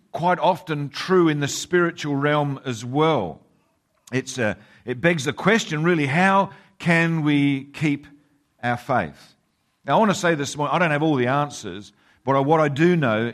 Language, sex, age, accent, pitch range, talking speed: English, male, 50-69, Australian, 140-200 Hz, 175 wpm